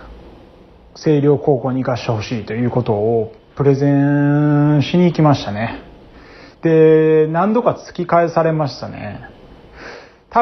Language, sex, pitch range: Japanese, male, 120-160 Hz